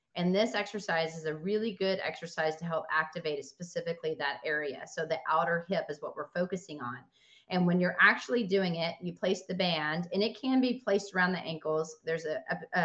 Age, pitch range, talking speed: 30-49, 165-200 Hz, 205 wpm